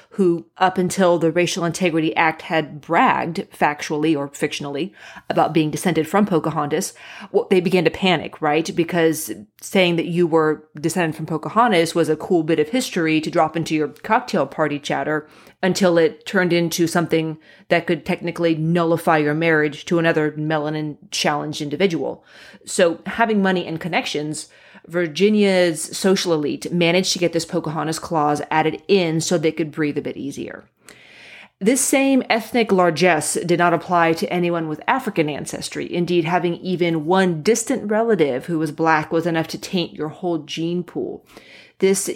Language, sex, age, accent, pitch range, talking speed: English, female, 30-49, American, 155-180 Hz, 160 wpm